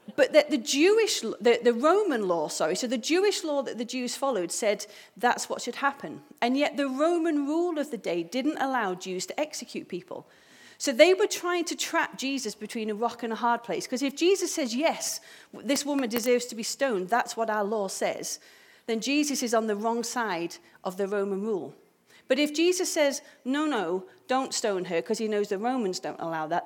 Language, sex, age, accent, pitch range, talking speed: English, female, 40-59, British, 215-305 Hz, 205 wpm